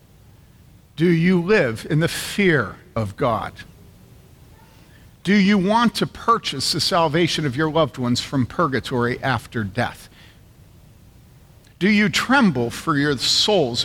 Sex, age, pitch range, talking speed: male, 50-69, 120-175 Hz, 125 wpm